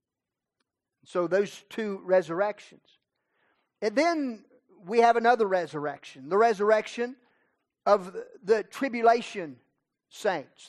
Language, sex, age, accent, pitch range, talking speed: English, male, 40-59, American, 180-220 Hz, 95 wpm